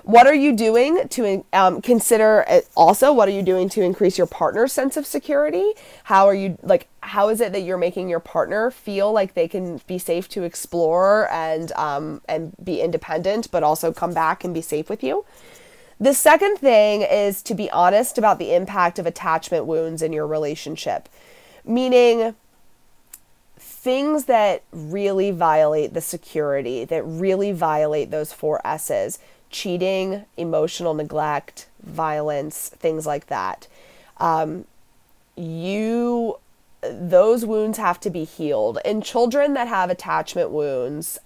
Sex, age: female, 30-49